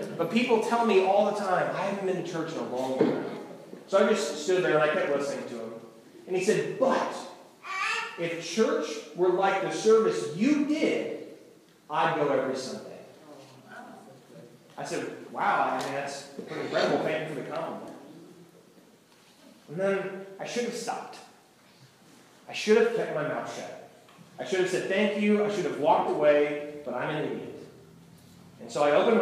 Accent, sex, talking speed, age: American, male, 175 wpm, 30-49